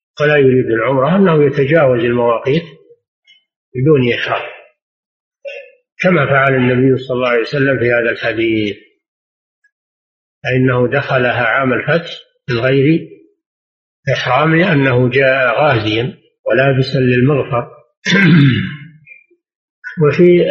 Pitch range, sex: 125-160 Hz, male